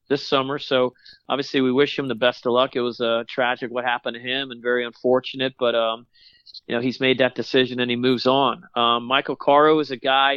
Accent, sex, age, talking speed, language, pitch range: American, male, 40-59, 235 wpm, English, 120-140 Hz